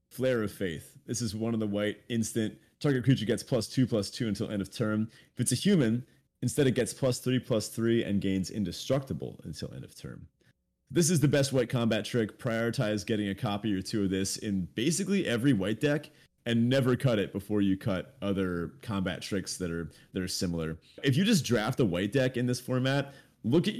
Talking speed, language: 215 wpm, English